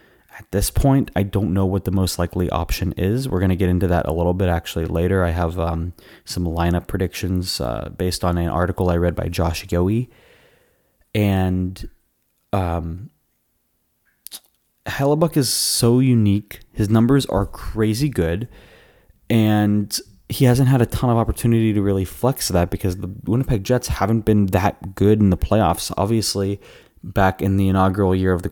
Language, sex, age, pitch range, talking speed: English, male, 20-39, 90-115 Hz, 170 wpm